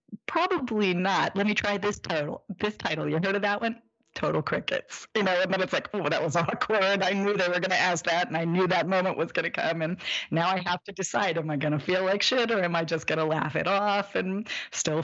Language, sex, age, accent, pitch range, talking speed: English, female, 30-49, American, 140-190 Hz, 250 wpm